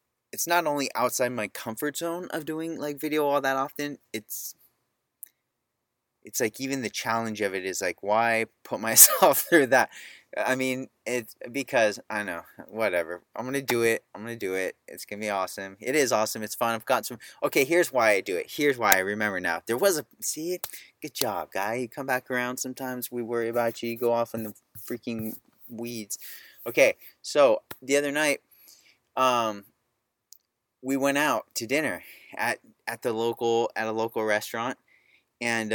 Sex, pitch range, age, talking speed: male, 110-130 Hz, 20-39, 185 wpm